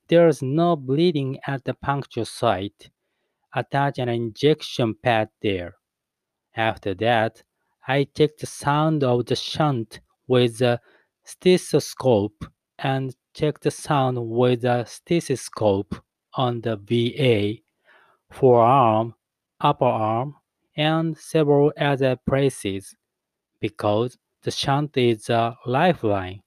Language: English